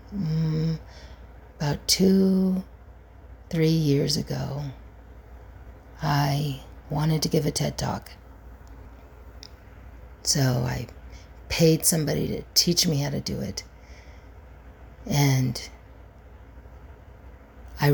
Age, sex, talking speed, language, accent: 50-69, female, 85 wpm, English, American